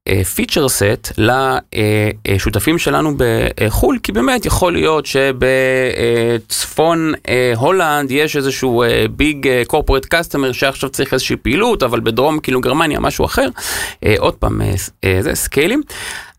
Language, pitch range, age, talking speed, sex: Hebrew, 100-135 Hz, 30-49, 110 wpm, male